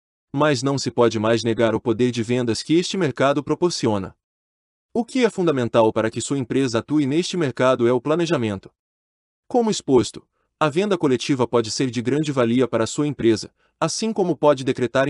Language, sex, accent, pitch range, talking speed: Portuguese, male, Brazilian, 115-160 Hz, 185 wpm